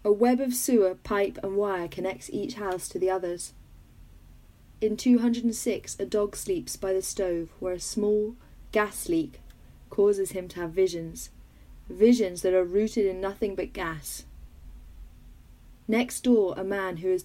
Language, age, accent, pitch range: English, 30-49, British, 180-210 Hz